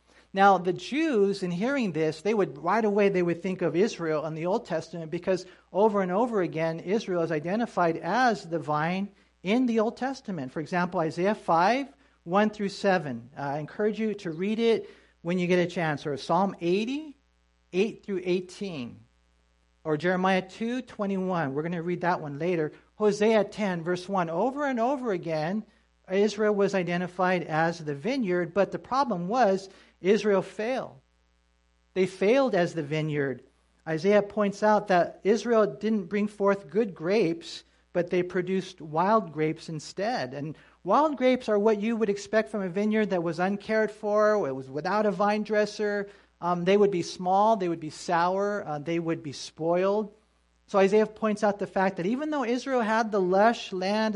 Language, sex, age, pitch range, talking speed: English, male, 50-69, 165-210 Hz, 175 wpm